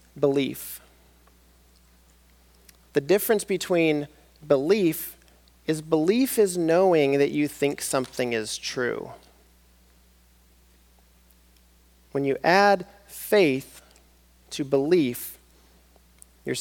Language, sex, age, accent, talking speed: English, male, 40-59, American, 80 wpm